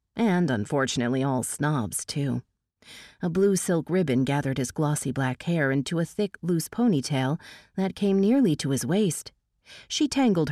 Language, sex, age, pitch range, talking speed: English, female, 40-59, 130-190 Hz, 155 wpm